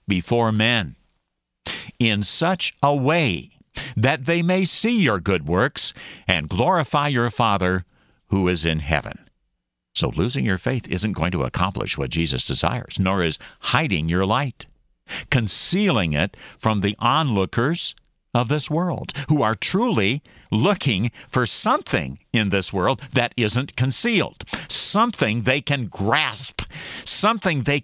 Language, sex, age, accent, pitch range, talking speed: English, male, 60-79, American, 90-135 Hz, 135 wpm